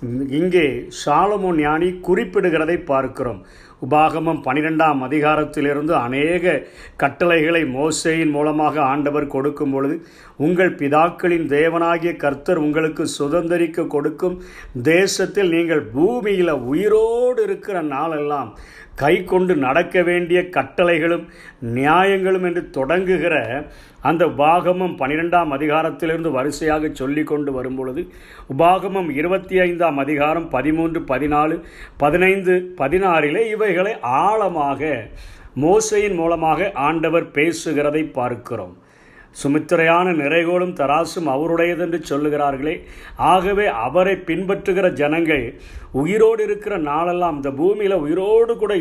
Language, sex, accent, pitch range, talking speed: Tamil, male, native, 145-180 Hz, 95 wpm